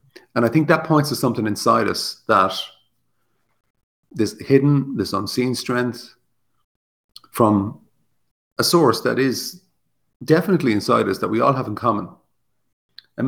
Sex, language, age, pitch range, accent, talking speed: male, English, 40-59, 100-125 Hz, Irish, 135 wpm